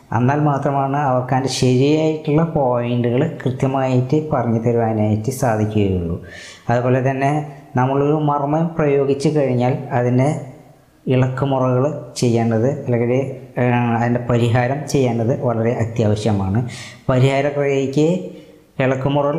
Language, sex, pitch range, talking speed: Malayalam, female, 120-145 Hz, 85 wpm